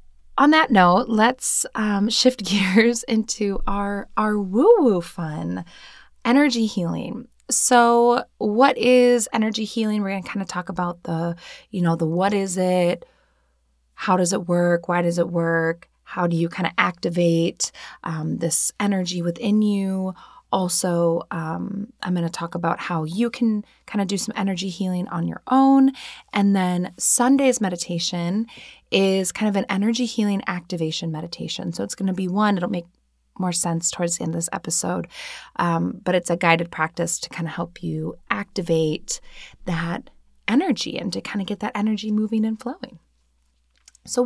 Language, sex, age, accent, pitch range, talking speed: English, female, 20-39, American, 170-225 Hz, 165 wpm